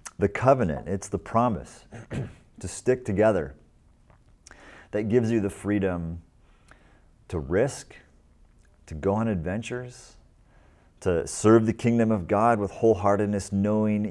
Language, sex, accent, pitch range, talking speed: English, male, American, 90-110 Hz, 120 wpm